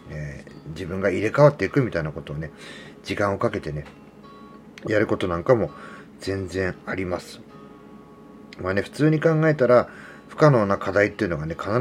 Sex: male